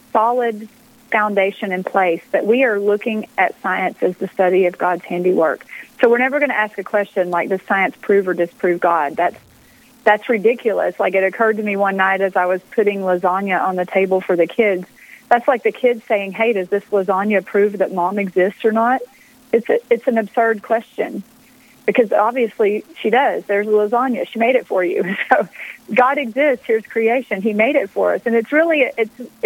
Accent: American